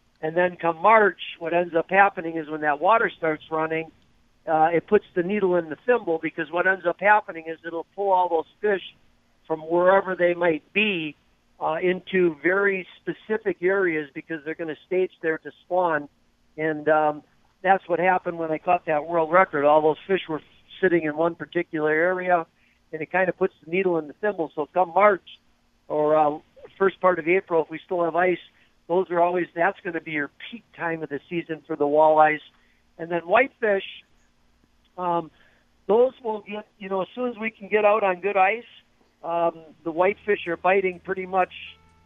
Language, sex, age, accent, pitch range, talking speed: English, male, 50-69, American, 155-185 Hz, 195 wpm